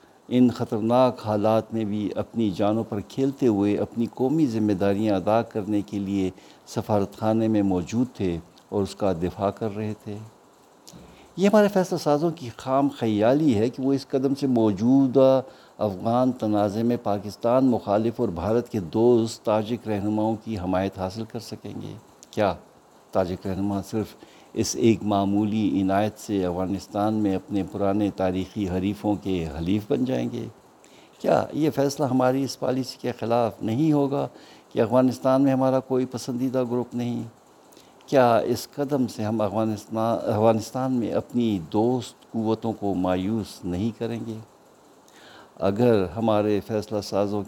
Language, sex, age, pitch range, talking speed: Urdu, male, 60-79, 100-125 Hz, 150 wpm